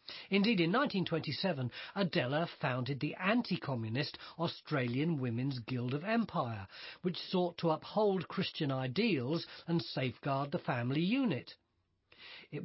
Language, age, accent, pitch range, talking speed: English, 40-59, British, 130-195 Hz, 115 wpm